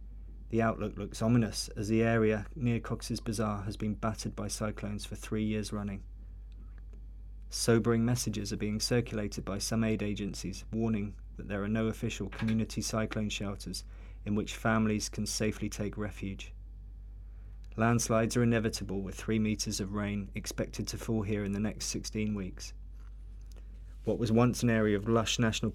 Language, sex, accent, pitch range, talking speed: English, male, British, 100-110 Hz, 160 wpm